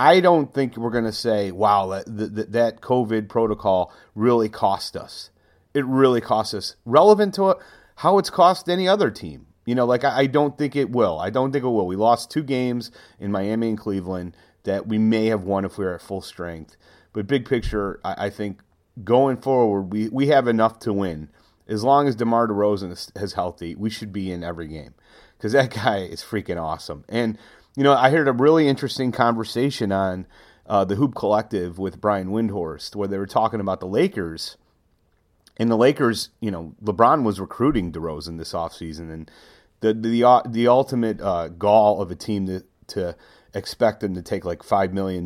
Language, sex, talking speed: English, male, 200 wpm